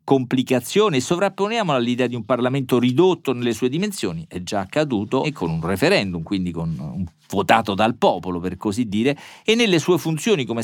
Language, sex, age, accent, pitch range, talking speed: Italian, male, 50-69, native, 110-135 Hz, 180 wpm